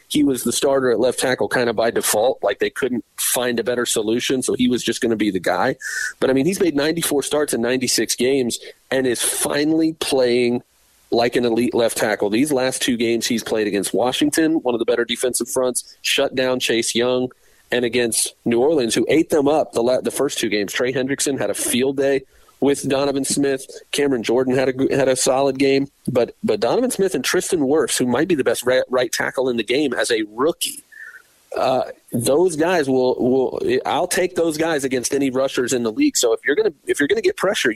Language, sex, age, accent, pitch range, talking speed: English, male, 40-59, American, 125-195 Hz, 220 wpm